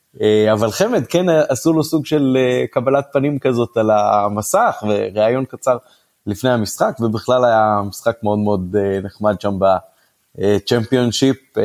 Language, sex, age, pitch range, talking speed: Hebrew, male, 30-49, 105-125 Hz, 125 wpm